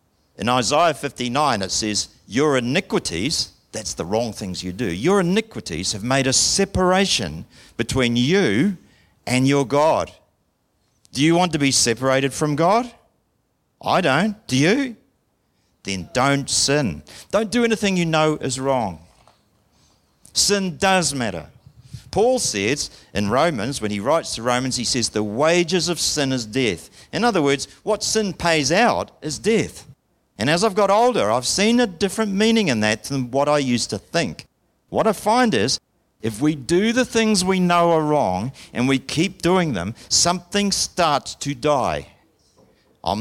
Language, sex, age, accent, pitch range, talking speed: English, male, 50-69, Australian, 120-180 Hz, 160 wpm